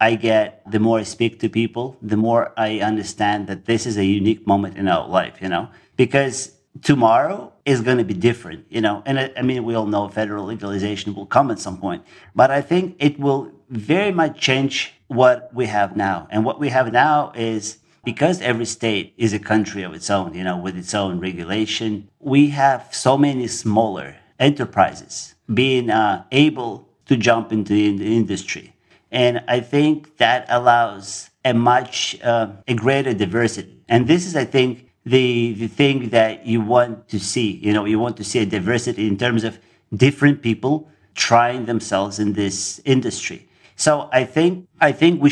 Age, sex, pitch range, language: 50-69, male, 105-130 Hz, English